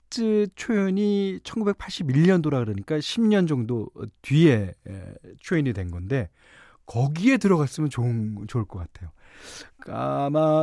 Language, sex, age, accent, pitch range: Korean, male, 40-59, native, 115-180 Hz